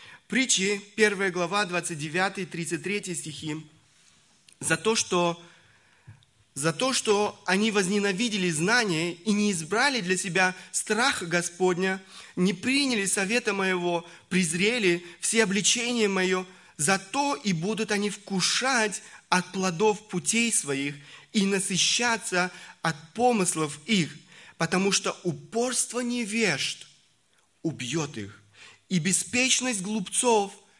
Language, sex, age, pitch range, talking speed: Russian, male, 20-39, 165-210 Hz, 105 wpm